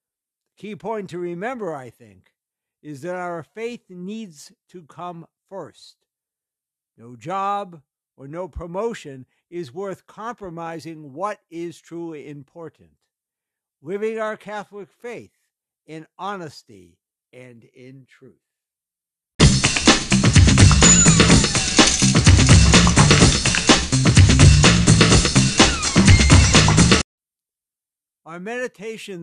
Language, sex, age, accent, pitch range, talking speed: English, male, 60-79, American, 130-180 Hz, 75 wpm